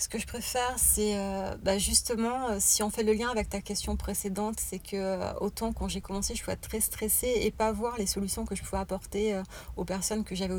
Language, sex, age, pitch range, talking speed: French, female, 30-49, 190-215 Hz, 230 wpm